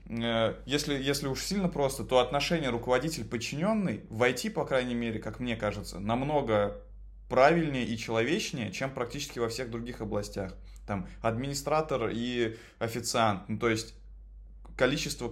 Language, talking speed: Russian, 135 wpm